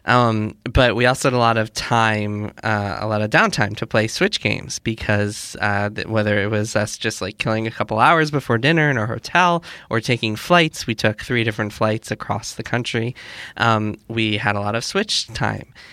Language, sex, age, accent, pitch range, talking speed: English, male, 20-39, American, 110-125 Hz, 205 wpm